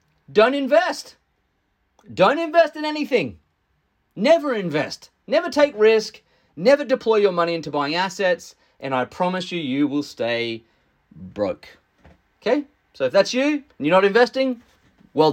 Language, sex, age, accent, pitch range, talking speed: English, male, 30-49, Australian, 145-225 Hz, 140 wpm